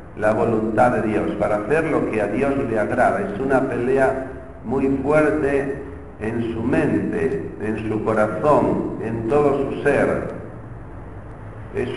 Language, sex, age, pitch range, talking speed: Spanish, male, 50-69, 105-135 Hz, 140 wpm